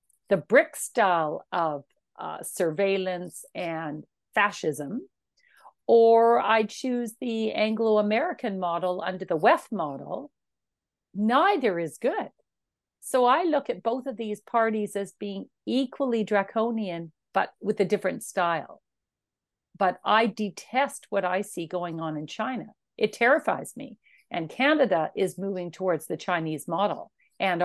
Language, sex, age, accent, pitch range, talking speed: English, female, 50-69, American, 180-235 Hz, 130 wpm